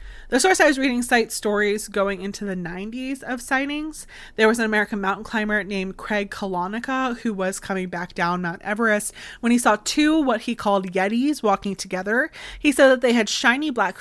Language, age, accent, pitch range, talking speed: English, 20-39, American, 185-230 Hz, 195 wpm